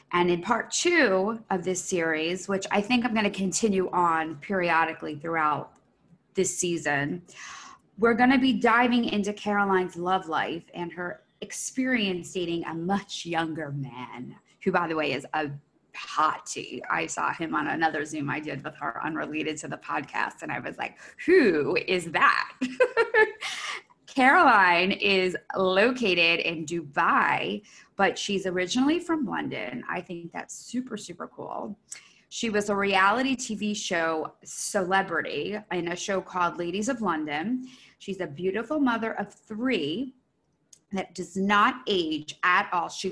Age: 20-39